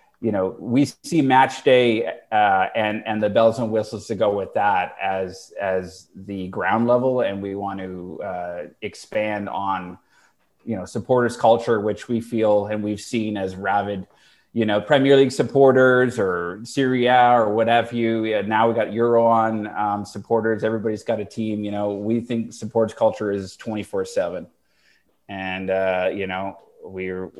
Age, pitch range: 30-49, 100-115 Hz